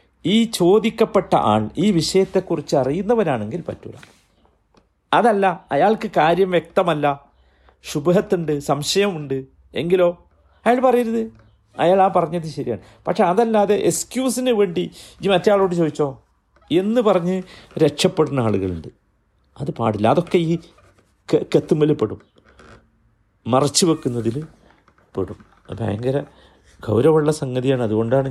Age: 50-69